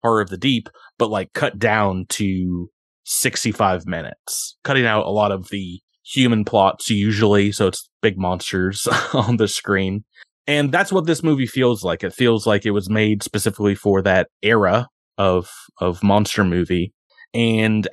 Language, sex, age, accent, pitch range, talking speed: English, male, 20-39, American, 95-120 Hz, 165 wpm